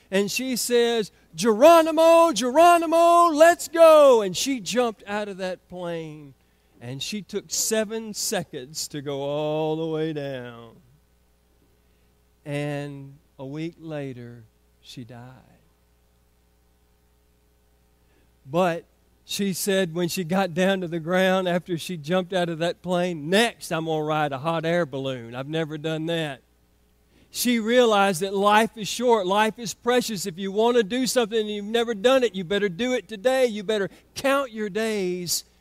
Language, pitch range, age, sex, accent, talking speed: English, 135-210 Hz, 40-59, male, American, 155 wpm